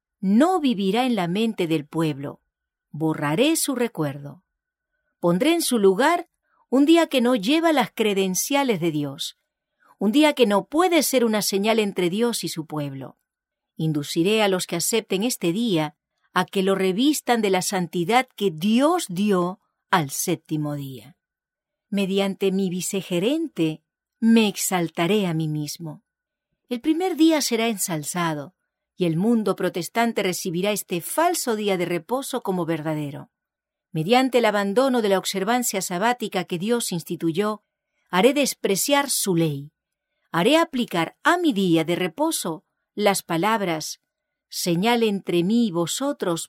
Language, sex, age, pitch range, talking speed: English, female, 40-59, 175-255 Hz, 140 wpm